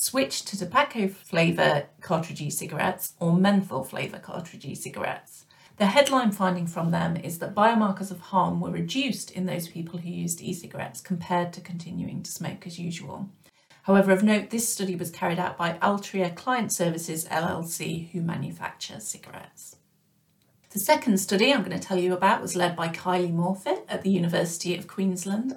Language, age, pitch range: English, 40-59, 175-200 Hz